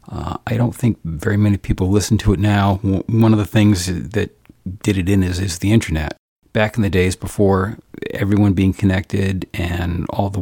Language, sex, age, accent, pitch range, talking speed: English, male, 40-59, American, 90-110 Hz, 195 wpm